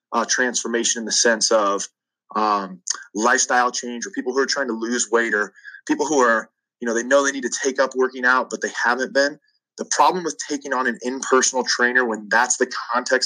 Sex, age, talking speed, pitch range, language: male, 20-39, 215 wpm, 115-135 Hz, English